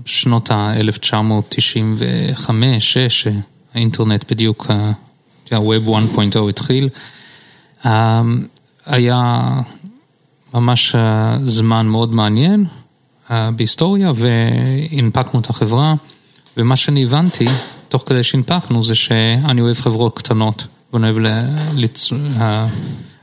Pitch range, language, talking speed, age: 110-130 Hz, Hebrew, 75 wpm, 30-49